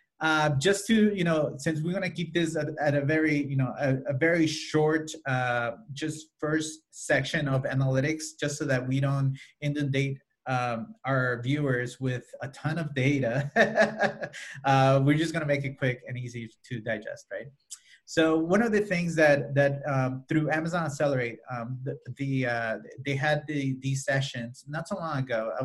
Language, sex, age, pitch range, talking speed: English, male, 30-49, 130-155 Hz, 185 wpm